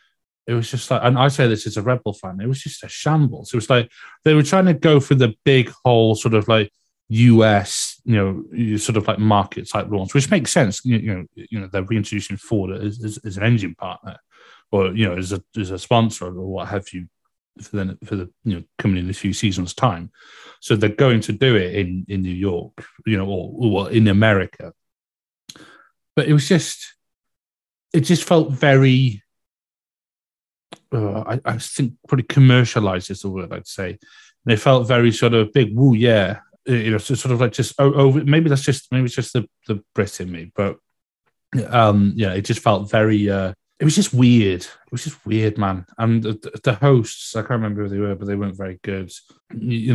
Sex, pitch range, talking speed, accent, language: male, 100-120 Hz, 210 wpm, British, English